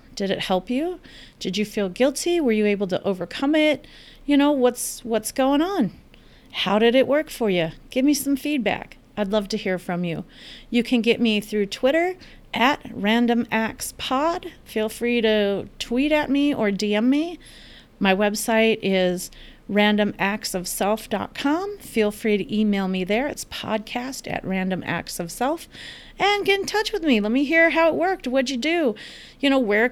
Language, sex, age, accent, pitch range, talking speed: English, female, 40-59, American, 200-275 Hz, 175 wpm